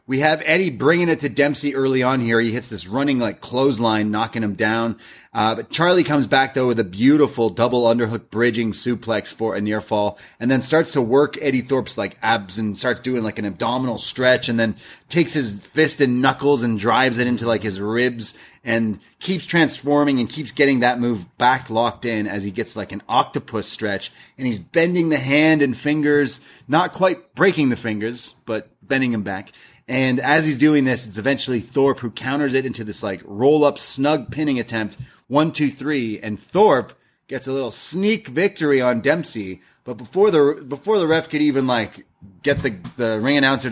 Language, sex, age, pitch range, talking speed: English, male, 30-49, 110-140 Hz, 200 wpm